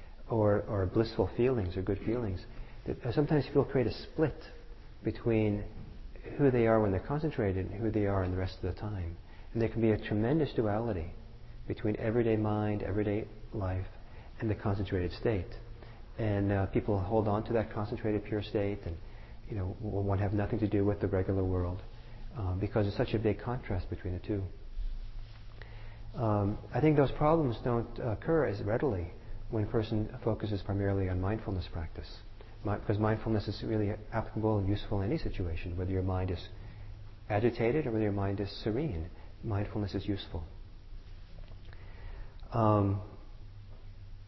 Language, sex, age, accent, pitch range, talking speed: English, male, 40-59, American, 95-110 Hz, 165 wpm